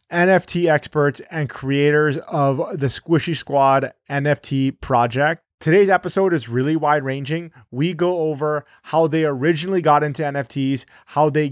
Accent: American